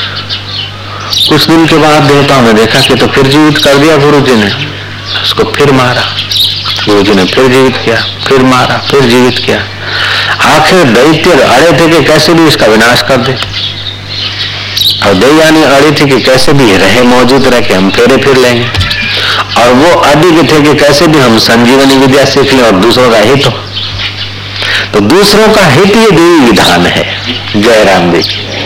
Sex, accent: male, native